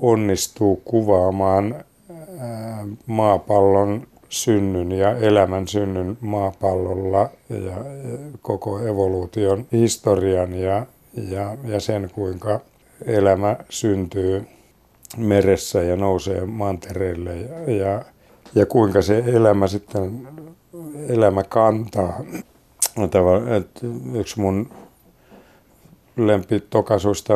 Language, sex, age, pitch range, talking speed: Finnish, male, 60-79, 95-110 Hz, 80 wpm